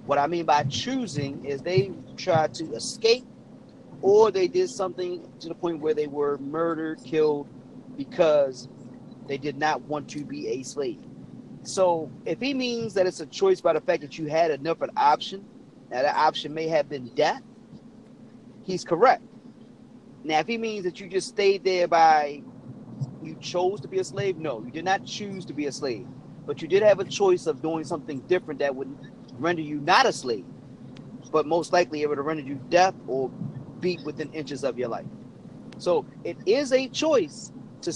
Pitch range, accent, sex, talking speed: 150-190 Hz, American, male, 190 wpm